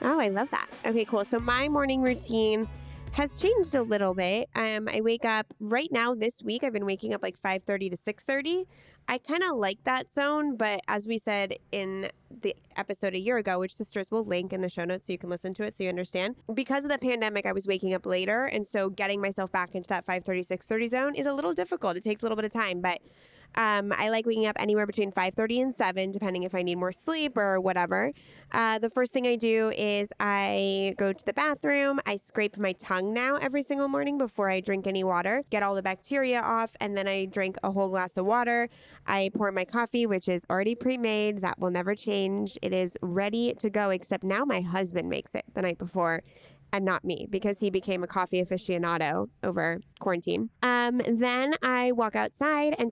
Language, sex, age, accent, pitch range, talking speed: English, female, 20-39, American, 190-235 Hz, 225 wpm